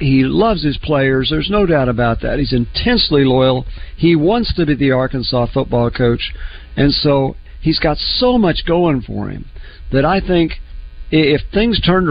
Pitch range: 105-150 Hz